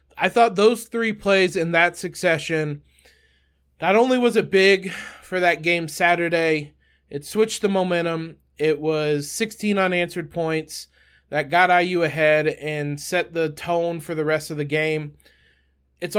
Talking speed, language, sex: 150 wpm, English, male